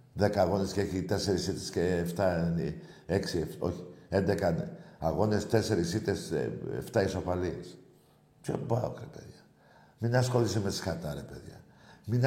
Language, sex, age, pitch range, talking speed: Greek, male, 60-79, 90-140 Hz, 135 wpm